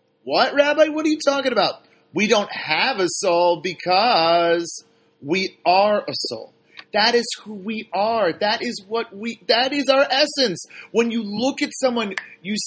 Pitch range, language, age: 180-235 Hz, English, 40-59